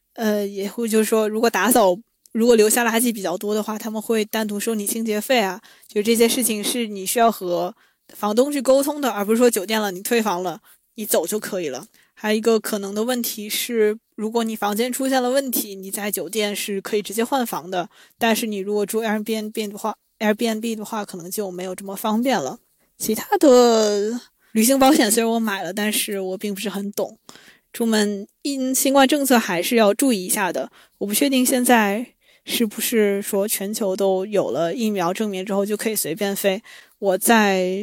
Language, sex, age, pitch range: Chinese, female, 20-39, 195-235 Hz